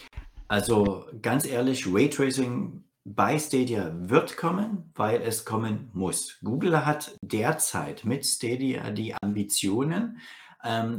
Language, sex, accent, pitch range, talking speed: German, male, German, 105-135 Hz, 110 wpm